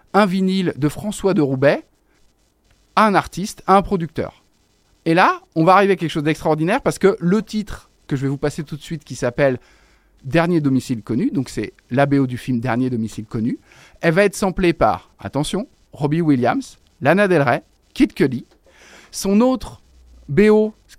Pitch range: 135-195 Hz